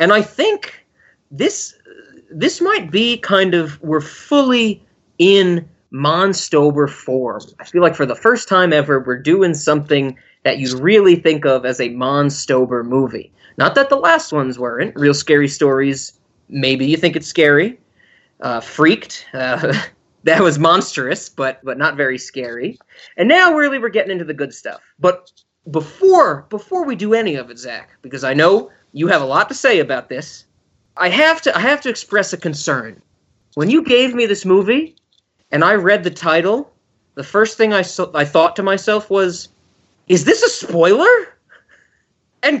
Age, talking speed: 20-39, 175 wpm